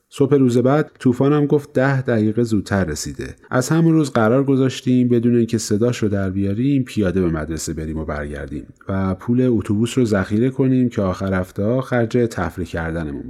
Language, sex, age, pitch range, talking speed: Persian, male, 30-49, 95-130 Hz, 175 wpm